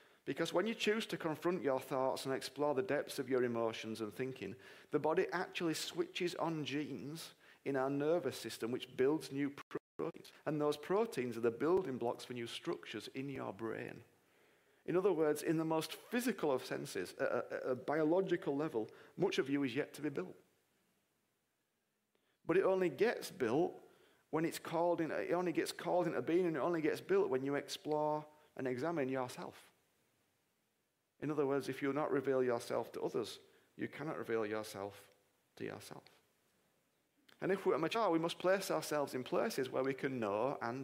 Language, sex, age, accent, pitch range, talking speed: English, male, 40-59, British, 130-175 Hz, 185 wpm